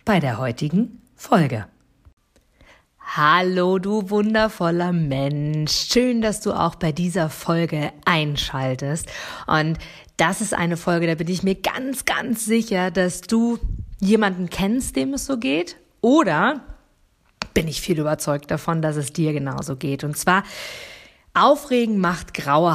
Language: German